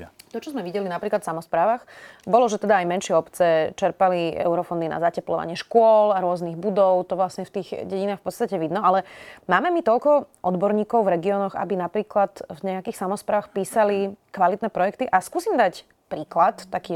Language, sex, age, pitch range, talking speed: Slovak, female, 30-49, 175-210 Hz, 175 wpm